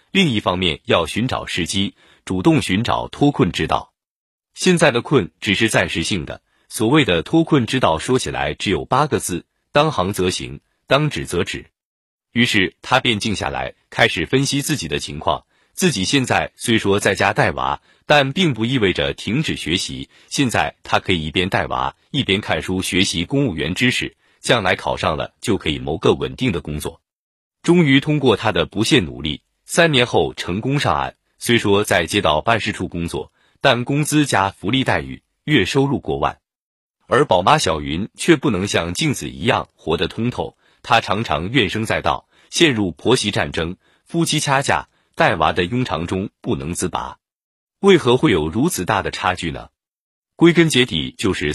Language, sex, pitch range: Chinese, male, 90-135 Hz